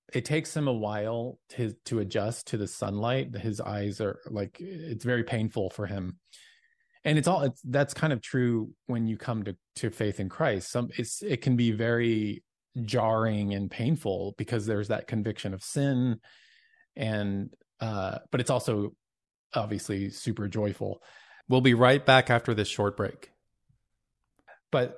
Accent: American